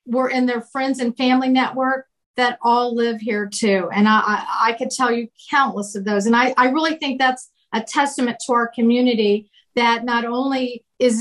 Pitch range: 215-245 Hz